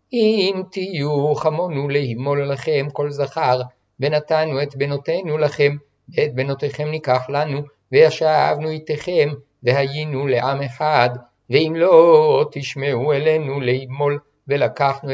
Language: Hebrew